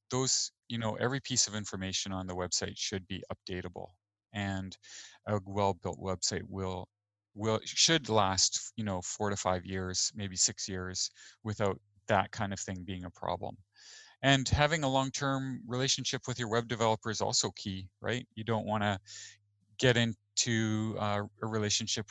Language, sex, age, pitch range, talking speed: English, male, 30-49, 100-125 Hz, 160 wpm